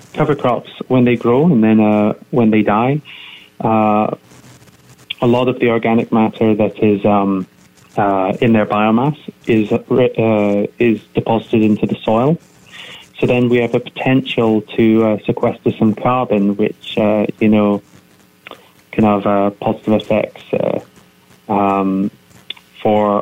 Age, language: 30-49, English